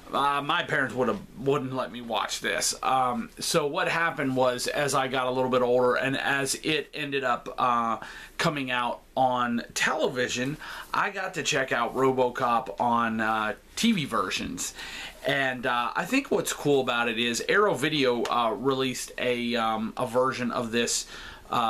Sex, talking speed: male, 170 wpm